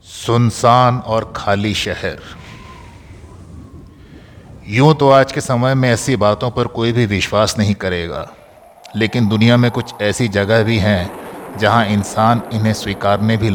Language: Hindi